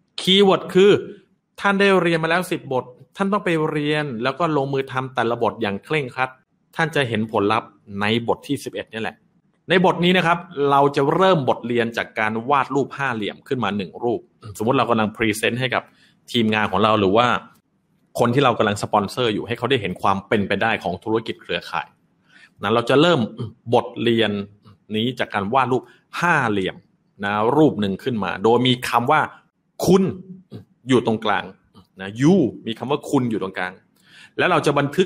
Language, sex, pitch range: Thai, male, 115-165 Hz